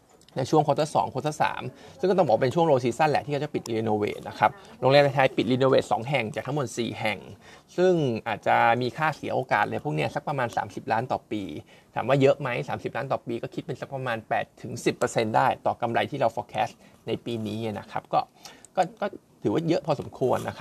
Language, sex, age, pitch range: Thai, male, 20-39, 115-145 Hz